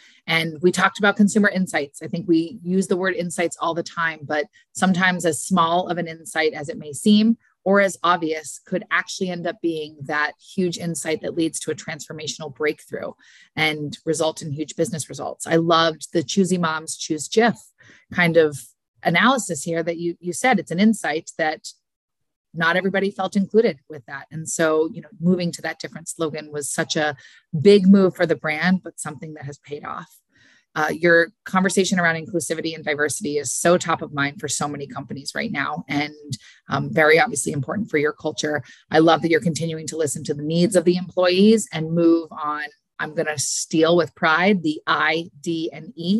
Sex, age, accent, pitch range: female, 30-49, American, 155-185 Hz